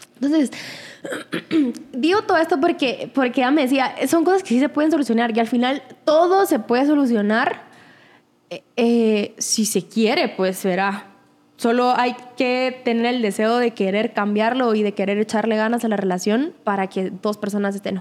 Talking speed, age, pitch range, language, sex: 175 wpm, 10-29, 215-260 Hz, Spanish, female